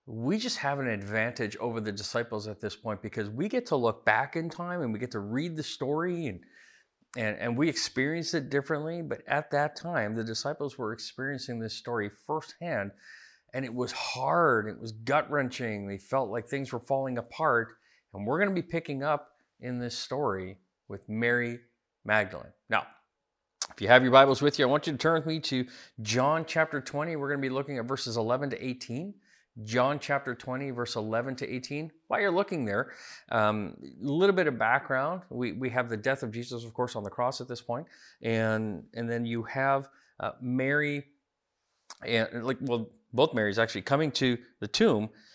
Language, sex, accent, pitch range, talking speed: English, male, American, 110-140 Hz, 195 wpm